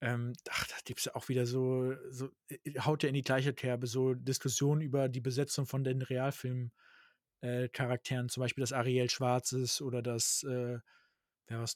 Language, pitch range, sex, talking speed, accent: German, 125-145 Hz, male, 180 wpm, German